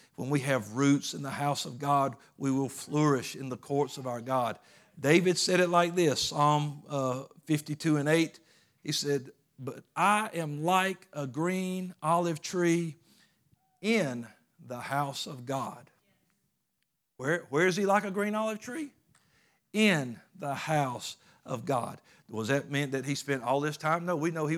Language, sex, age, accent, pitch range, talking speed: English, male, 50-69, American, 140-170 Hz, 170 wpm